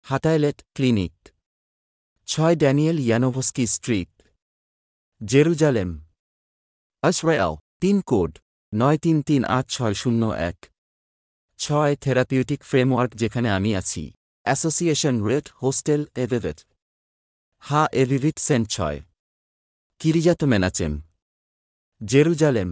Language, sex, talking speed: Bengali, male, 85 wpm